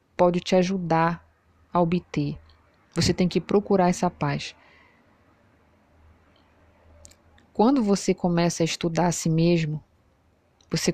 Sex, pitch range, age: female, 150-195 Hz, 20-39